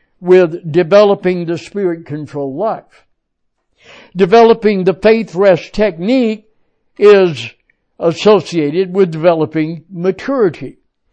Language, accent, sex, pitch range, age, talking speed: English, American, male, 165-220 Hz, 60-79, 80 wpm